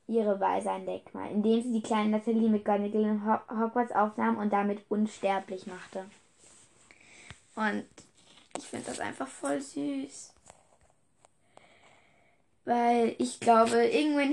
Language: German